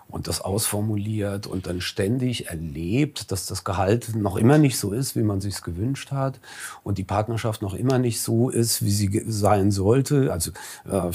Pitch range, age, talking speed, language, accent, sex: 95-120 Hz, 40-59, 190 wpm, German, German, male